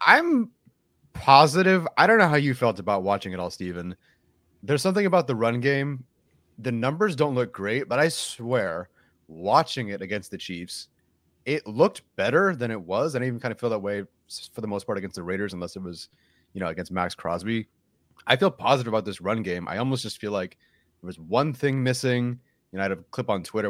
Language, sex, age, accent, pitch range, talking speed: English, male, 30-49, American, 95-130 Hz, 220 wpm